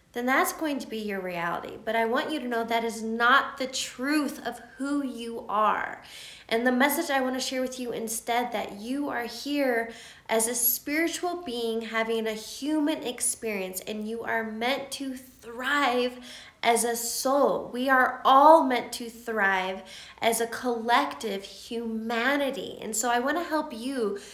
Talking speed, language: 170 wpm, English